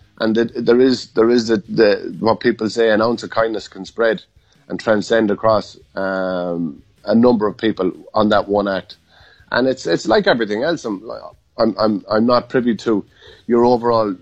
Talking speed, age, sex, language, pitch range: 175 wpm, 30-49, male, English, 105-130 Hz